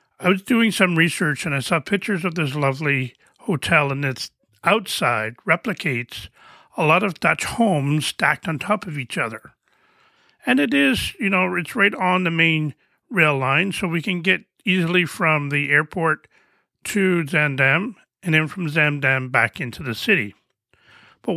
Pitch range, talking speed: 130-185 Hz, 165 wpm